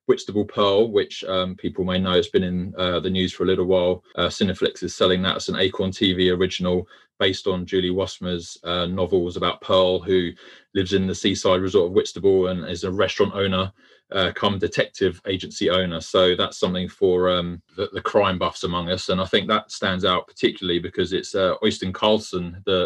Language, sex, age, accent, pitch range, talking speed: English, male, 20-39, British, 90-95 Hz, 200 wpm